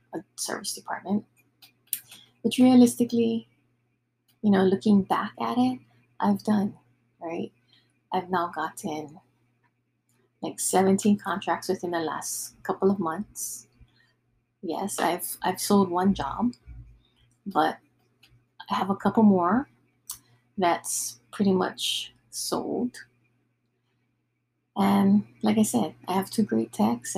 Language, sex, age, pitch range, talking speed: English, female, 20-39, 125-205 Hz, 115 wpm